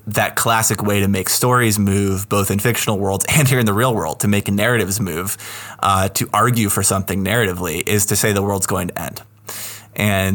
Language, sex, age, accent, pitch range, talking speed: English, male, 20-39, American, 100-115 Hz, 210 wpm